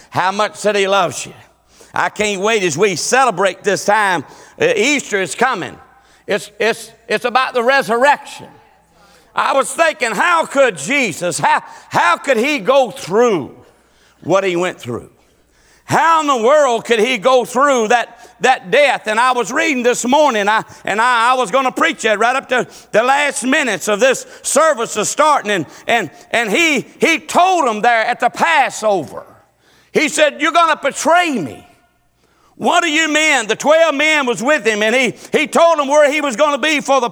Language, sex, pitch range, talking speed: English, male, 230-310 Hz, 190 wpm